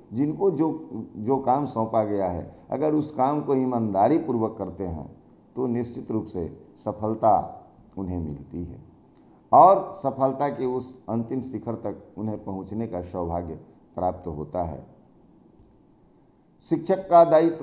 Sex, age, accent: male, 50-69, native